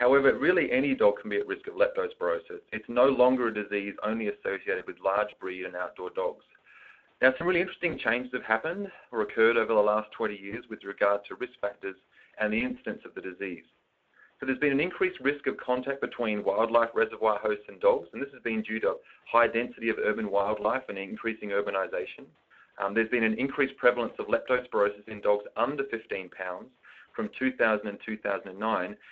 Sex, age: male, 30-49